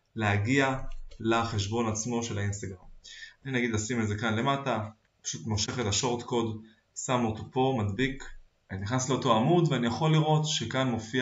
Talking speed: 155 wpm